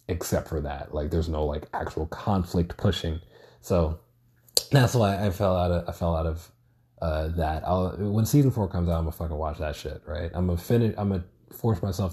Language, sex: English, male